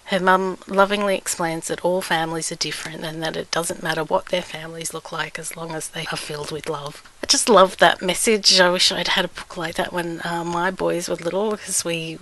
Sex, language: female, English